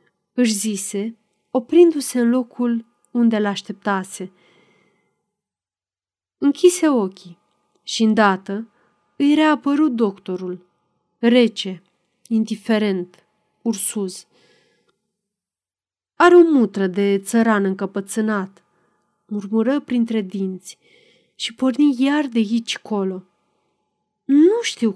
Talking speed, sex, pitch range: 80 wpm, female, 200-260 Hz